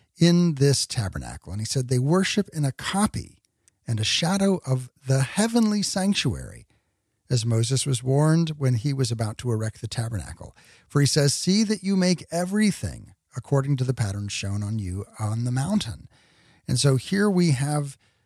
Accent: American